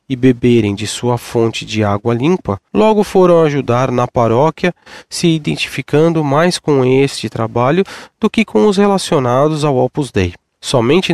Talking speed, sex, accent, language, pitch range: 150 wpm, male, Brazilian, Portuguese, 115-160 Hz